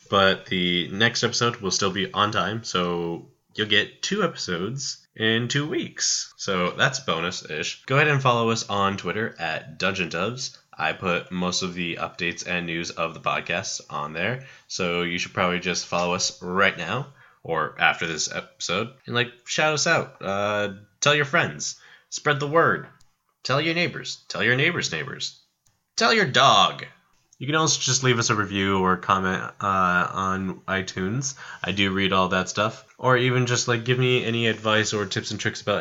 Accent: American